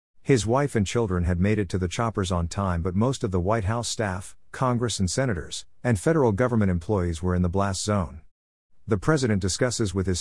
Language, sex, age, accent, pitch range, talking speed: English, male, 50-69, American, 90-110 Hz, 210 wpm